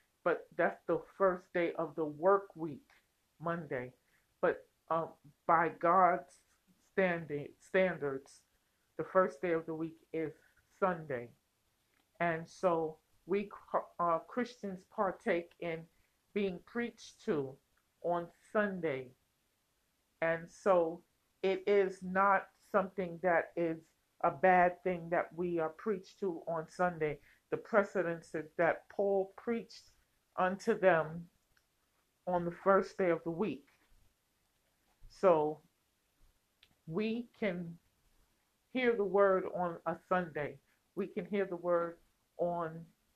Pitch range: 165-195 Hz